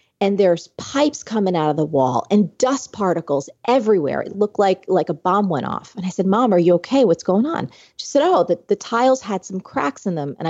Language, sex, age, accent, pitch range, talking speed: English, female, 30-49, American, 155-205 Hz, 240 wpm